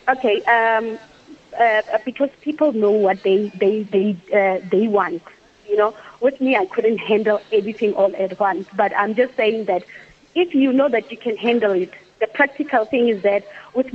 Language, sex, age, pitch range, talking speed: English, female, 30-49, 205-230 Hz, 185 wpm